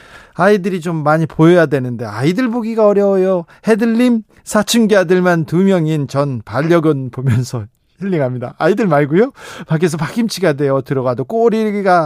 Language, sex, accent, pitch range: Korean, male, native, 140-195 Hz